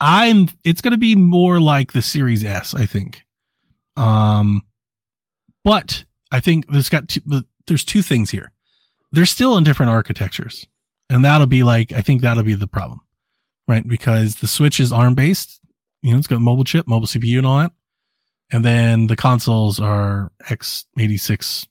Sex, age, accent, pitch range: male, 30-49, American, 110-145 Hz